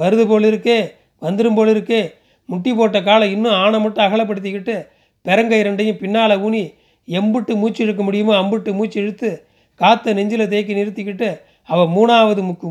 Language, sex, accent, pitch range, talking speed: Tamil, male, native, 190-220 Hz, 135 wpm